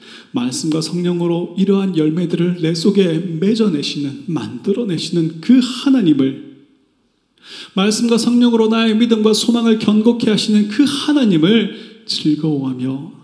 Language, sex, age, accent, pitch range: Korean, male, 30-49, native, 165-225 Hz